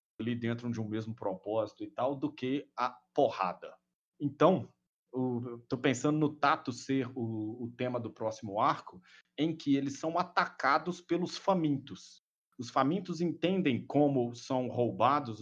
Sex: male